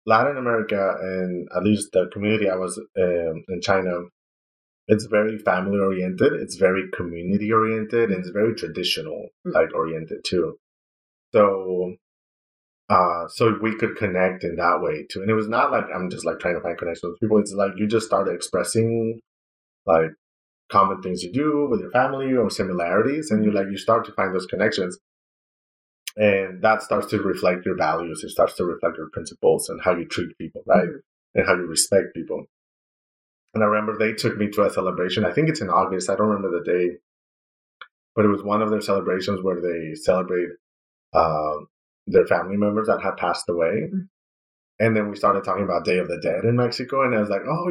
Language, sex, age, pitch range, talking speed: English, male, 30-49, 90-115 Hz, 195 wpm